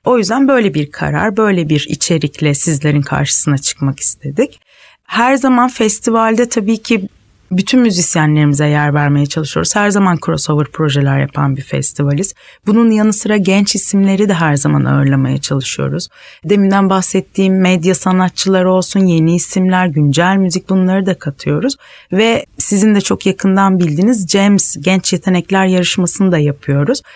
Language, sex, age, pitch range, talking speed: Turkish, female, 30-49, 165-220 Hz, 140 wpm